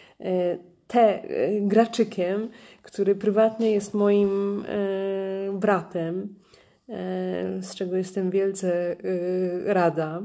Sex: female